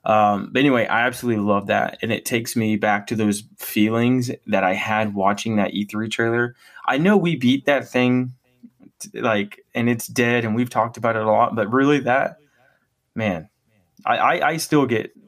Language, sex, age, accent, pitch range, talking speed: English, male, 20-39, American, 100-125 Hz, 190 wpm